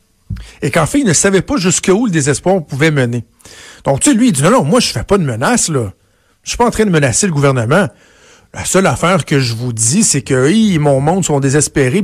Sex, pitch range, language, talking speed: male, 130-180 Hz, French, 265 wpm